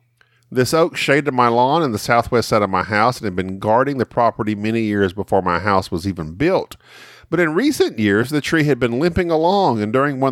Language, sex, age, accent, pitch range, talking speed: English, male, 40-59, American, 115-145 Hz, 225 wpm